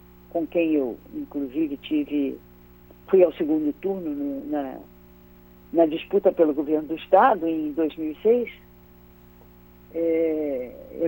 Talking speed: 115 wpm